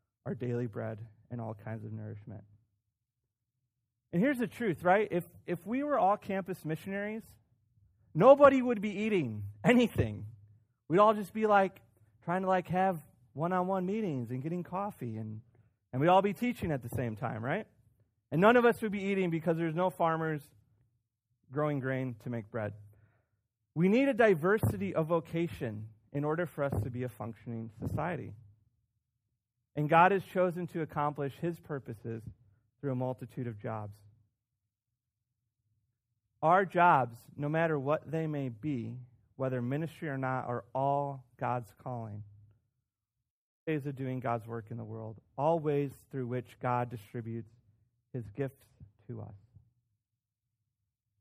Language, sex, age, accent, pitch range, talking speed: English, male, 30-49, American, 110-160 Hz, 150 wpm